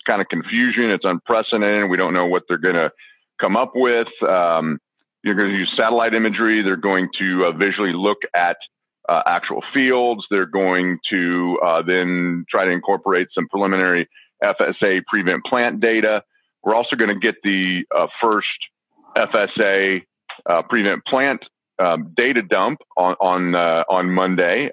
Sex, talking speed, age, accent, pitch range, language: male, 160 wpm, 40-59, American, 90-115 Hz, English